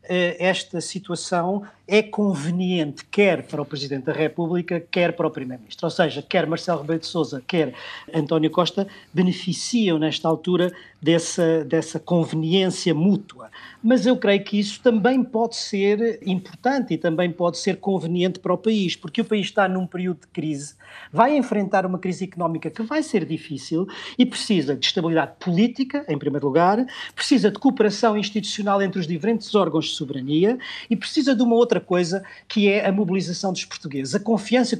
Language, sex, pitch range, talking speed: Portuguese, male, 165-210 Hz, 165 wpm